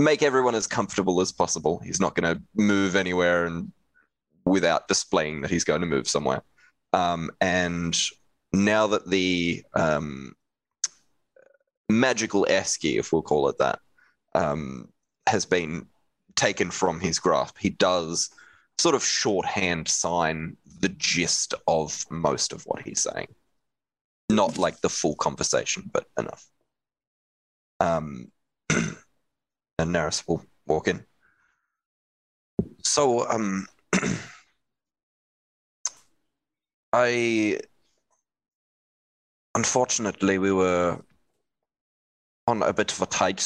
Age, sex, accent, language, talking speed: 20-39, male, Australian, English, 110 wpm